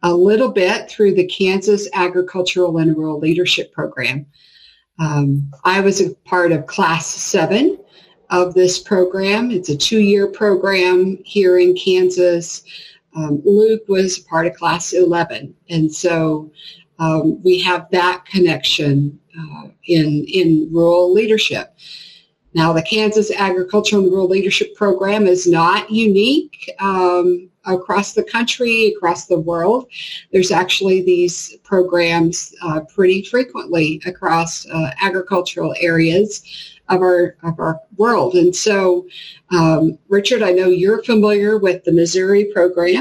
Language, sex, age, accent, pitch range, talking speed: English, female, 50-69, American, 165-200 Hz, 130 wpm